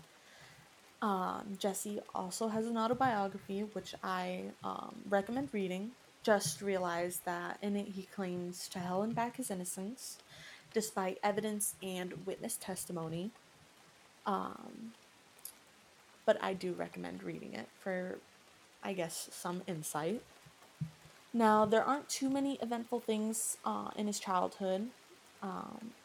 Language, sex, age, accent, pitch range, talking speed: English, female, 20-39, American, 185-220 Hz, 120 wpm